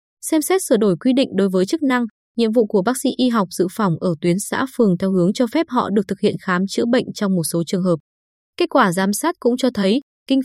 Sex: female